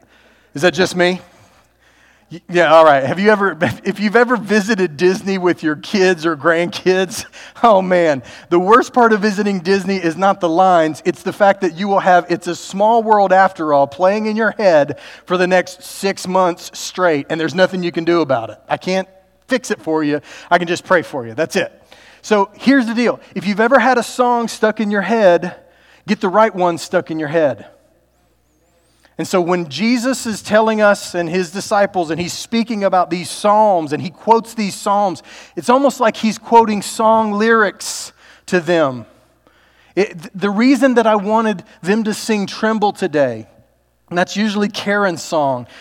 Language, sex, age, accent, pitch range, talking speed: English, male, 40-59, American, 170-210 Hz, 190 wpm